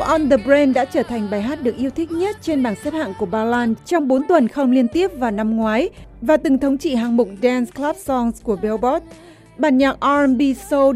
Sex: female